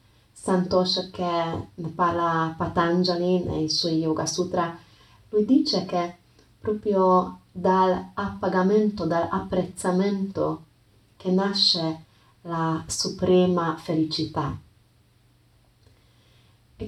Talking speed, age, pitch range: 80 wpm, 30-49, 160-190 Hz